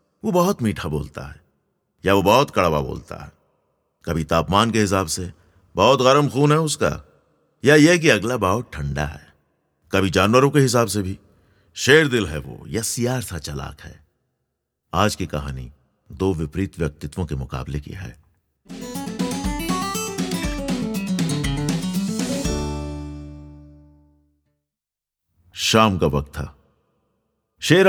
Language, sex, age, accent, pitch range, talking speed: Hindi, male, 50-69, native, 75-110 Hz, 125 wpm